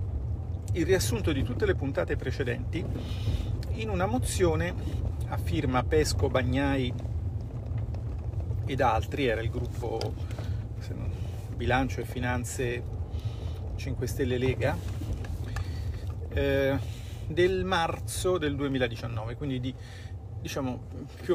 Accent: native